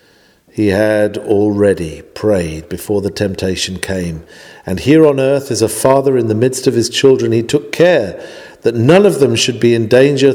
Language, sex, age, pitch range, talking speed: English, male, 50-69, 105-130 Hz, 185 wpm